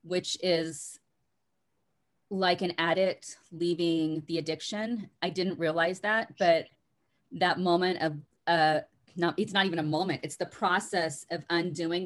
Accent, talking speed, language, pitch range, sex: American, 140 wpm, English, 155-180 Hz, female